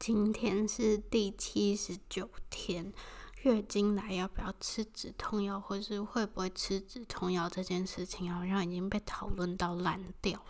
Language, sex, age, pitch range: Chinese, female, 20-39, 180-210 Hz